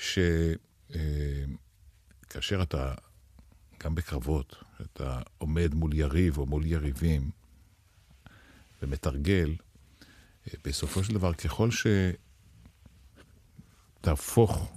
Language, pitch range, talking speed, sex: Hebrew, 75-95 Hz, 70 wpm, male